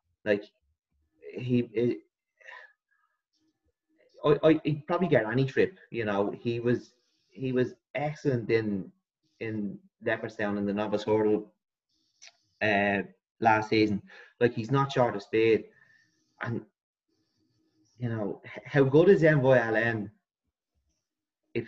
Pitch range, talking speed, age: 105-140 Hz, 110 wpm, 20-39